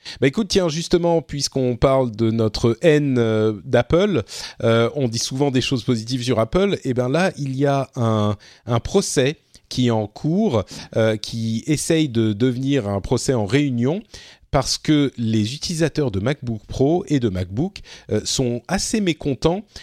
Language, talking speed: French, 165 wpm